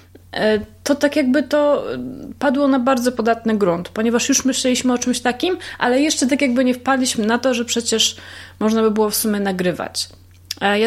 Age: 30-49